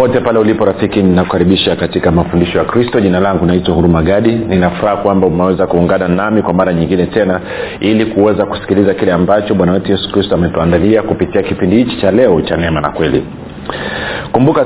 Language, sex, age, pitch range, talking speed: Swahili, male, 40-59, 90-115 Hz, 170 wpm